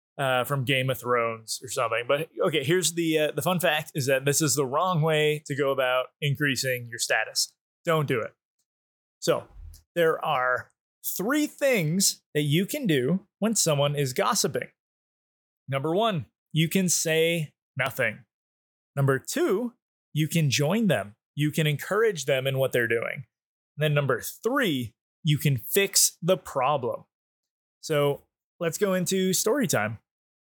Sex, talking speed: male, 155 wpm